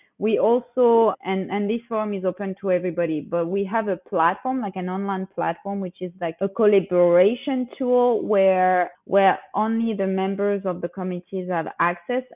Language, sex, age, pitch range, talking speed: English, female, 20-39, 175-200 Hz, 170 wpm